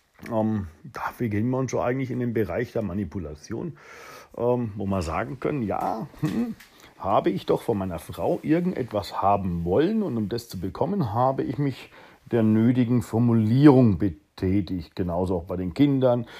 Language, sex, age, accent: German, male, 50-69, German